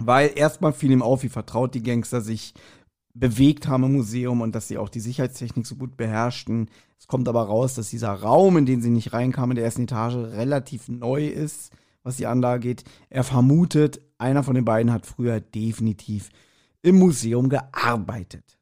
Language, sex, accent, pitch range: German, male, German, 120-155 Hz